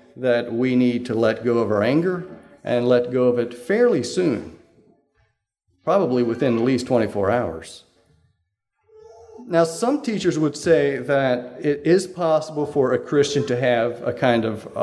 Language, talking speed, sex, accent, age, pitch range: English, 160 wpm, male, American, 40-59, 115-155 Hz